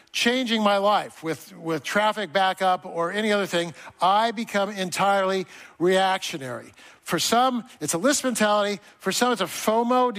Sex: male